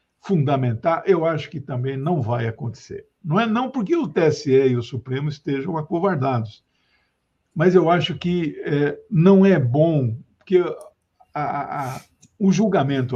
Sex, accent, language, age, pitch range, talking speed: male, Brazilian, Portuguese, 60-79, 135-190 Hz, 130 wpm